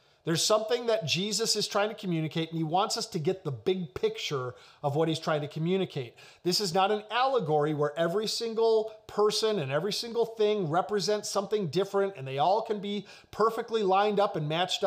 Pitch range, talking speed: 170-220 Hz, 200 wpm